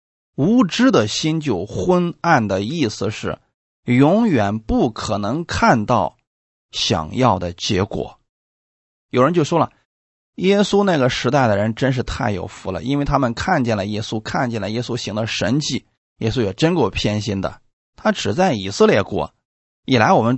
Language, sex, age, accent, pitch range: Chinese, male, 20-39, native, 100-140 Hz